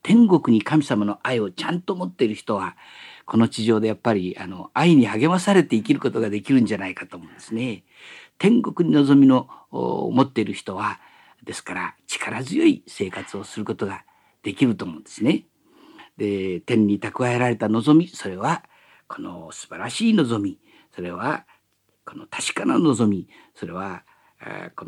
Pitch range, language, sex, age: 110-170 Hz, Japanese, male, 50-69